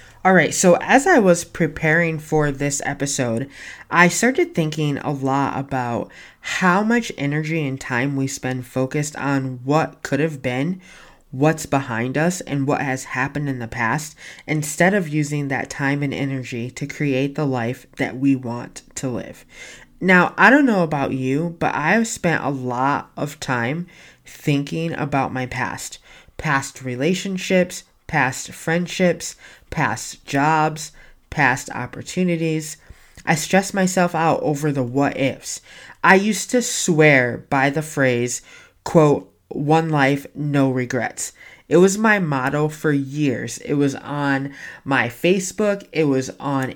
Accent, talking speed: American, 145 wpm